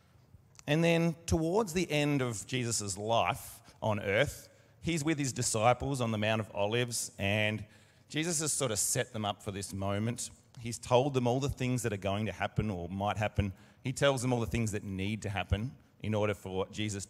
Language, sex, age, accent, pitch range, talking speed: English, male, 30-49, Australian, 105-130 Hz, 205 wpm